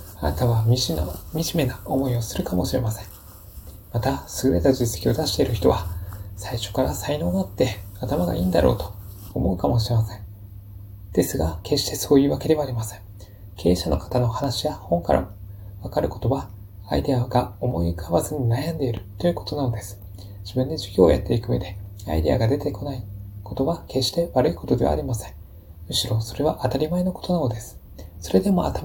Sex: male